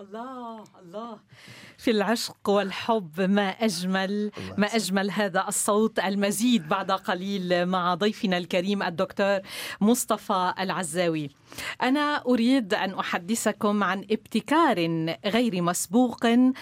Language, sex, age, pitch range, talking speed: Arabic, female, 40-59, 195-255 Hz, 100 wpm